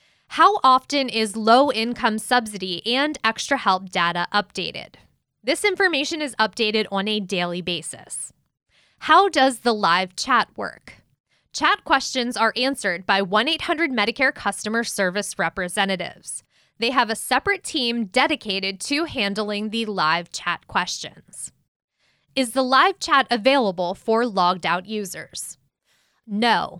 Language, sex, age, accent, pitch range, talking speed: English, female, 20-39, American, 195-270 Hz, 125 wpm